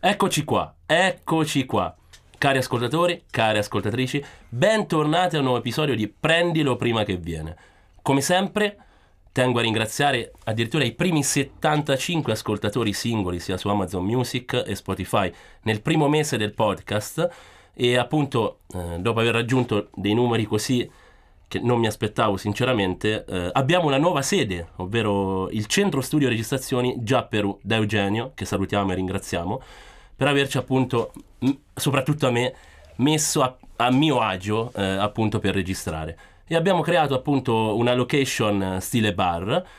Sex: male